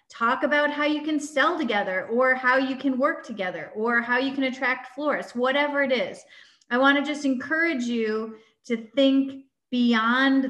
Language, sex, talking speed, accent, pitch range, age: English, female, 170 wpm, American, 230-285 Hz, 30-49